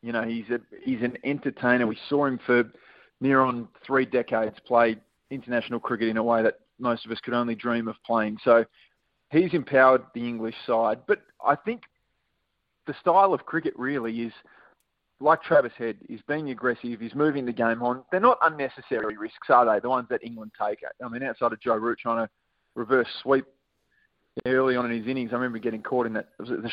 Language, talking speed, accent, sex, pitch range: English, 200 wpm, Australian, male, 115-135 Hz